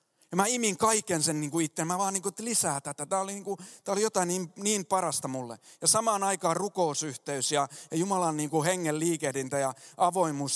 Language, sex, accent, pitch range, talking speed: Finnish, male, native, 155-200 Hz, 195 wpm